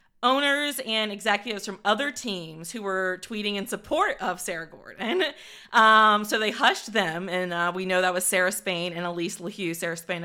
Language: English